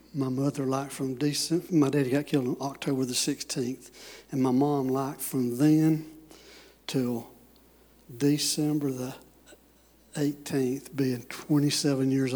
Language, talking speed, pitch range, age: English, 125 wpm, 130-145 Hz, 60-79